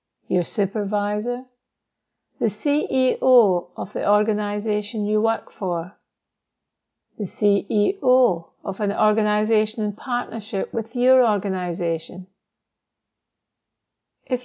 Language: English